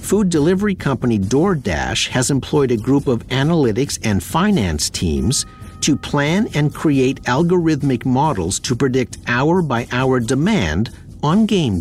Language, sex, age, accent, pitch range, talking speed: English, male, 50-69, American, 100-165 Hz, 125 wpm